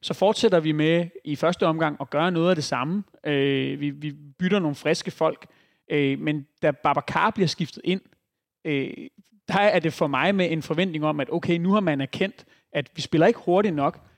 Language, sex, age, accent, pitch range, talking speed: Danish, male, 30-49, native, 145-175 Hz, 205 wpm